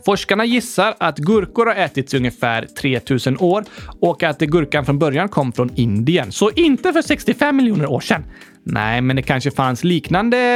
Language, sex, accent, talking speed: Swedish, male, native, 175 wpm